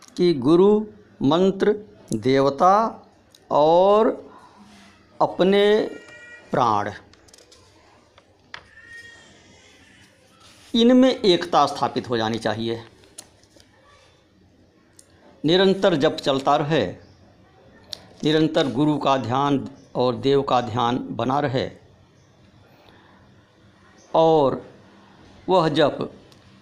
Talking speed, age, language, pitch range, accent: 70 wpm, 60-79, Hindi, 105-170 Hz, native